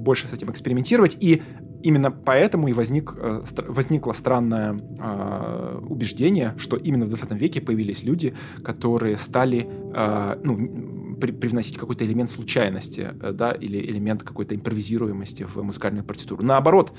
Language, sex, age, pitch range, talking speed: Russian, male, 20-39, 105-135 Hz, 120 wpm